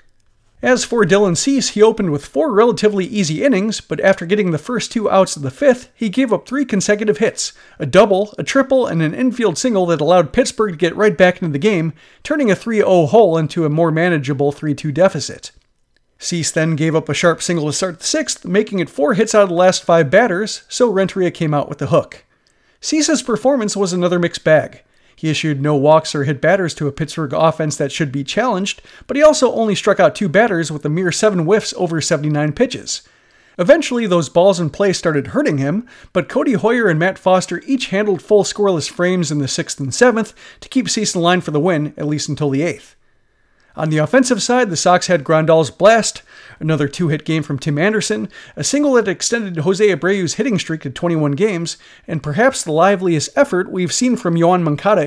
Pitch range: 155-215 Hz